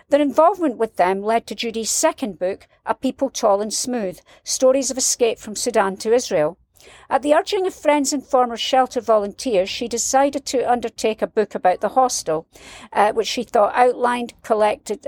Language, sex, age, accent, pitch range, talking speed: English, female, 50-69, British, 200-265 Hz, 180 wpm